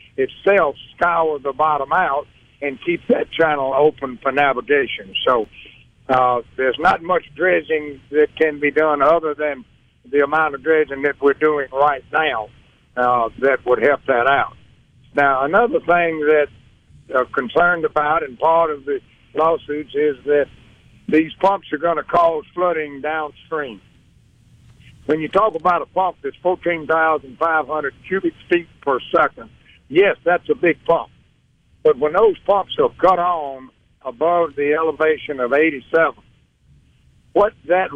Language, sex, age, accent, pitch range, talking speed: English, male, 60-79, American, 140-175 Hz, 145 wpm